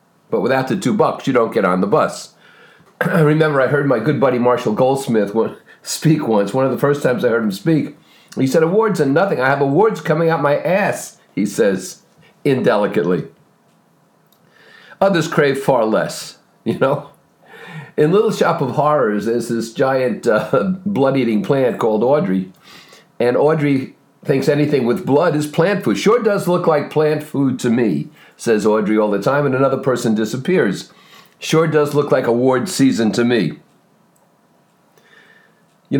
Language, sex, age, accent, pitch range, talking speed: English, male, 50-69, American, 130-180 Hz, 170 wpm